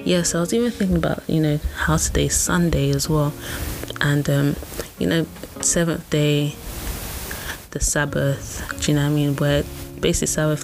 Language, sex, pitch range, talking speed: English, female, 130-160 Hz, 180 wpm